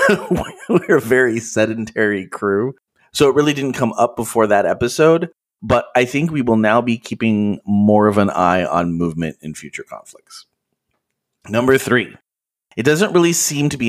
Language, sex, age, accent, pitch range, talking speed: English, male, 30-49, American, 100-125 Hz, 170 wpm